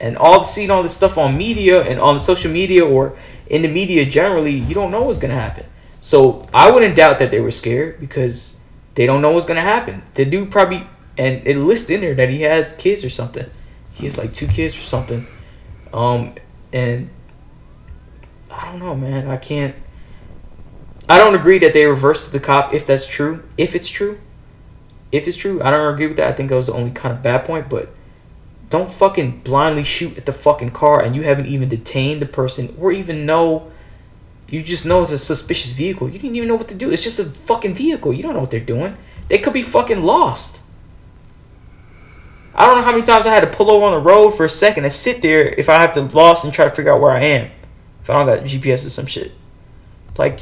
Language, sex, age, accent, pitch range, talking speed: English, male, 20-39, American, 130-180 Hz, 230 wpm